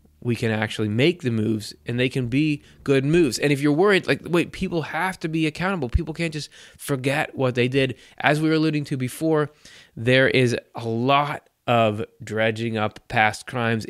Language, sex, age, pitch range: English, male, 20-39, 115-150 Hz